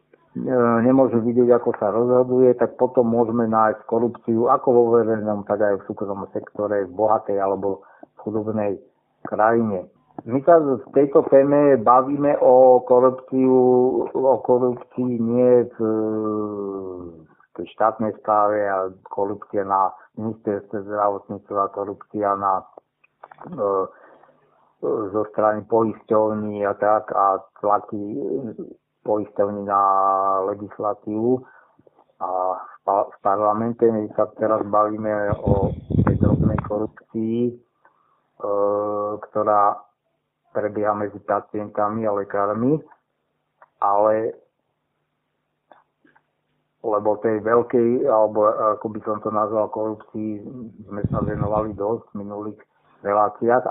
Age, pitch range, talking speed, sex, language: 50-69, 105-120 Hz, 100 wpm, male, Slovak